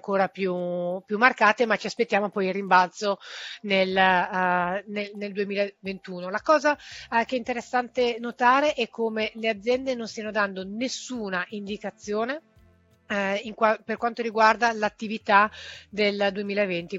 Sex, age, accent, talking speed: female, 30-49, native, 125 wpm